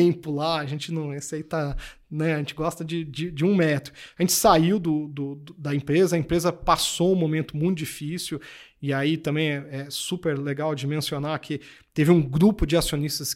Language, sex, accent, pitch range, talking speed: English, male, Brazilian, 145-170 Hz, 200 wpm